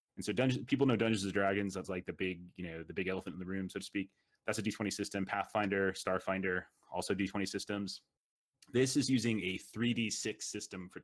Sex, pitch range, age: male, 90-110 Hz, 30-49